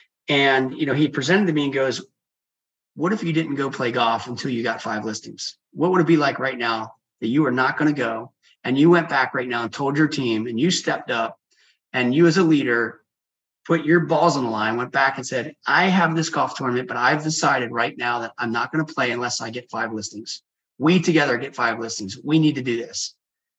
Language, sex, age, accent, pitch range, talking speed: English, male, 30-49, American, 120-155 Hz, 235 wpm